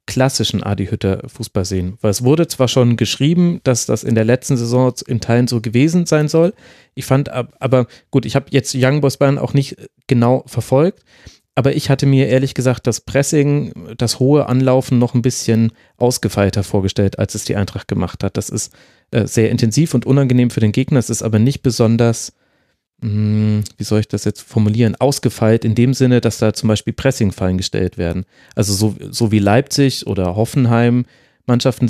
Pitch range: 110-130 Hz